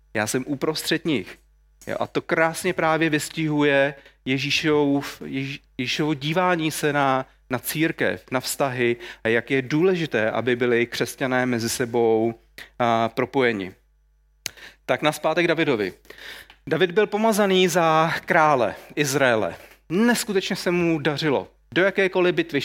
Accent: native